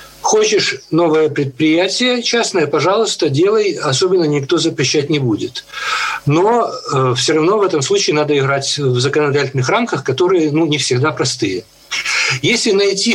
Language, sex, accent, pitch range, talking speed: Russian, male, native, 130-190 Hz, 130 wpm